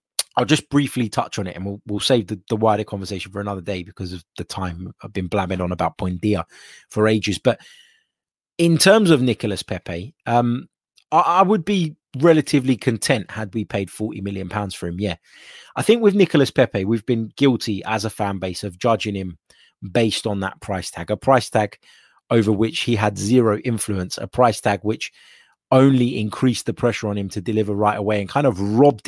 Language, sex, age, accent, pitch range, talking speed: English, male, 20-39, British, 100-120 Hz, 200 wpm